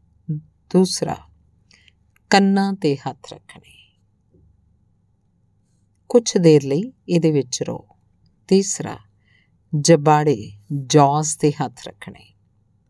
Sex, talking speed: female, 80 wpm